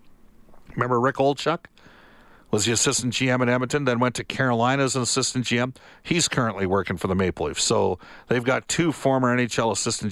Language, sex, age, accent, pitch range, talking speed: English, male, 50-69, American, 105-125 Hz, 185 wpm